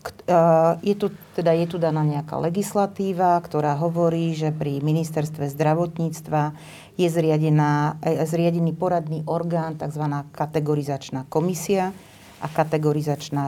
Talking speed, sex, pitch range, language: 95 wpm, female, 150-170 Hz, Slovak